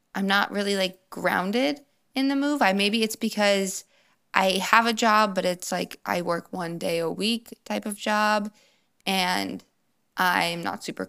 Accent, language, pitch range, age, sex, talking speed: American, English, 180-225 Hz, 20-39, female, 175 wpm